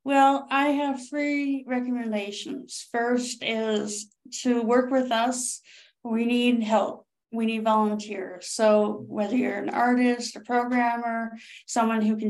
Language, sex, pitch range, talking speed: English, female, 215-250 Hz, 130 wpm